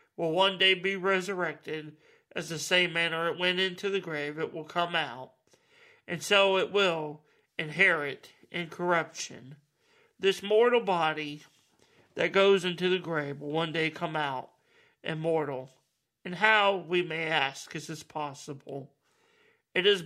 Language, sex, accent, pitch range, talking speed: English, male, American, 150-185 Hz, 145 wpm